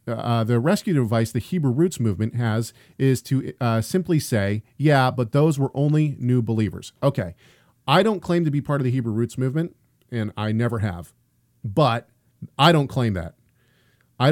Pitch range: 115-140 Hz